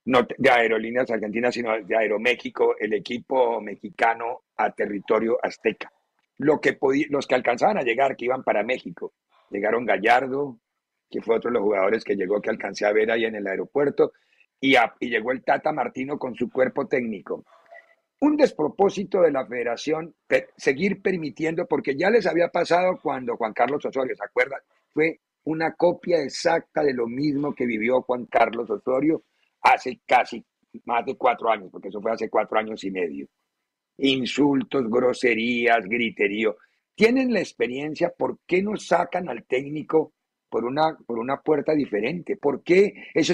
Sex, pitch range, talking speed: male, 120-185 Hz, 165 wpm